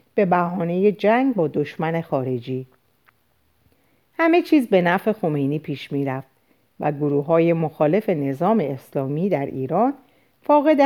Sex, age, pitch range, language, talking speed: female, 50-69, 145-200 Hz, Persian, 120 wpm